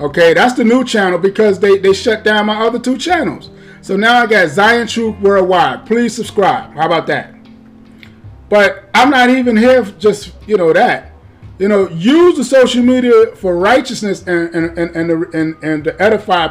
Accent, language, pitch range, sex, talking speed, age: American, English, 185-245 Hz, male, 190 wpm, 30-49